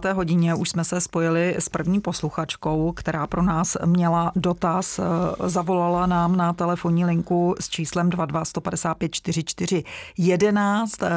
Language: Czech